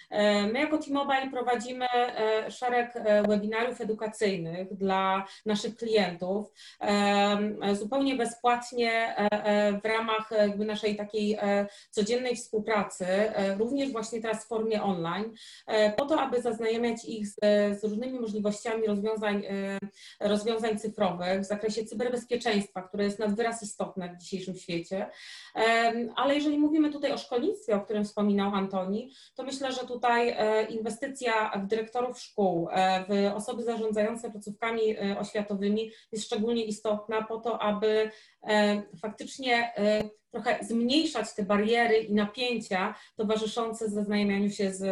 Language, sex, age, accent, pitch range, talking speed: Polish, female, 30-49, native, 205-235 Hz, 120 wpm